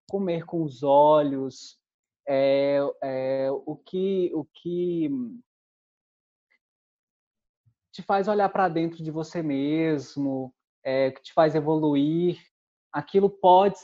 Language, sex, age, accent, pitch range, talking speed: Portuguese, male, 20-39, Brazilian, 135-165 Hz, 95 wpm